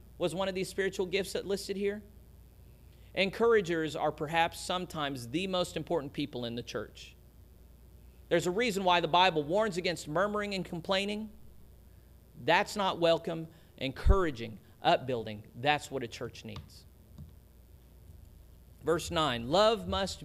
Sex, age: male, 40-59